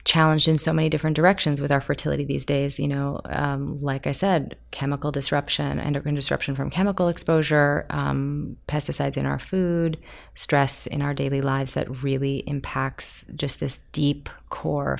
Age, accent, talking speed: 30-49, American, 165 wpm